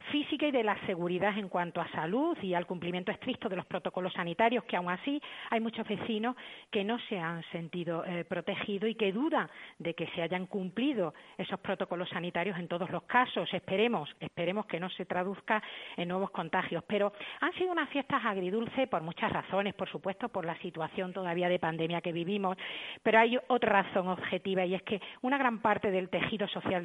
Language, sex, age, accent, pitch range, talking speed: Spanish, female, 40-59, Spanish, 175-220 Hz, 195 wpm